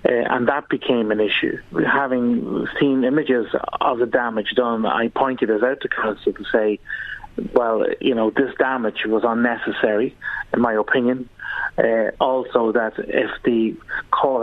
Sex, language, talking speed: male, English, 155 wpm